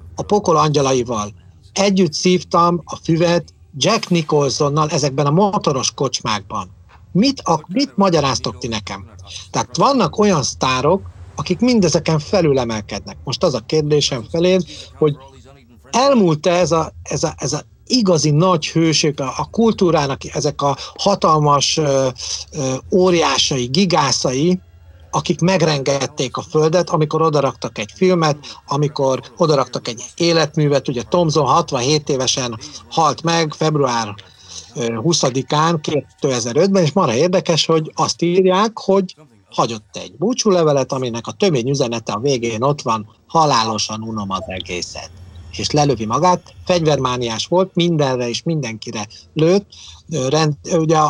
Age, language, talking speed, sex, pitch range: 60-79, Hungarian, 125 wpm, male, 120-170 Hz